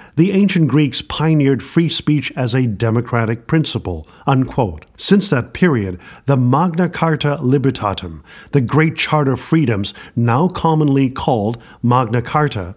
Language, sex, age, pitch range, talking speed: English, male, 50-69, 125-160 Hz, 125 wpm